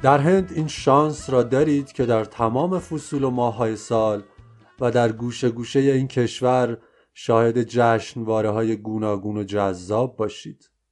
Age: 30-49